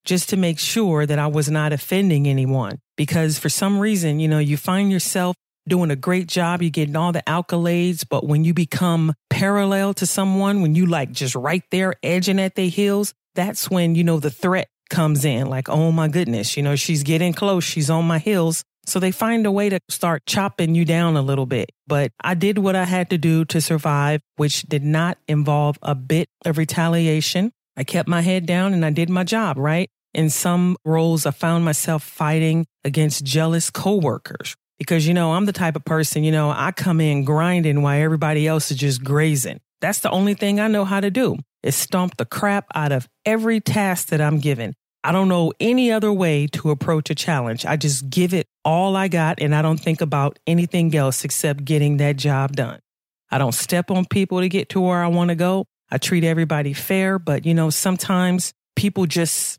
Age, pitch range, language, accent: 40-59, 150-185 Hz, English, American